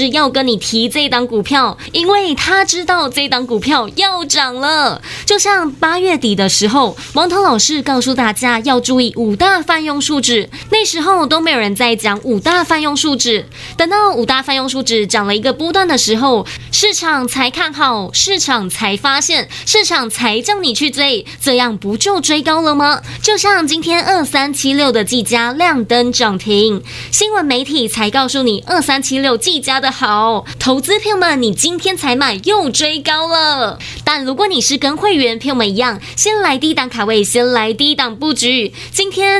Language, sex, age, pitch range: Chinese, female, 20-39, 240-340 Hz